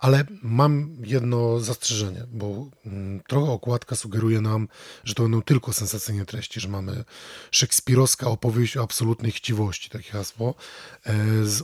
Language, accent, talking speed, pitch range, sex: English, Polish, 130 wpm, 105-120 Hz, male